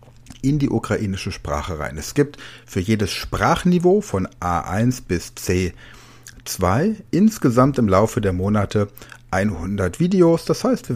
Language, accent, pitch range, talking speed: Ukrainian, German, 100-135 Hz, 130 wpm